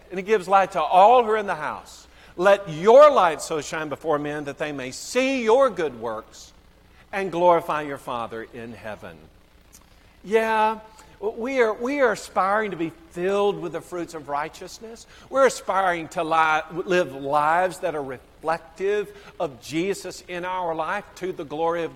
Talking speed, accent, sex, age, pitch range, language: 165 wpm, American, male, 50-69, 125-180 Hz, English